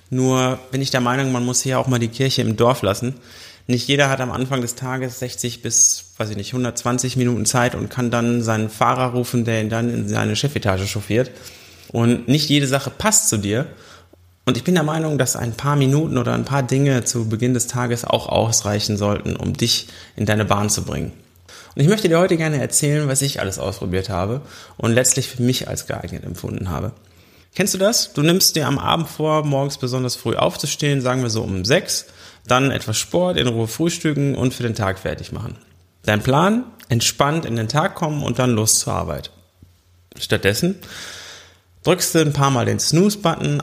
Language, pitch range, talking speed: German, 110-140 Hz, 200 wpm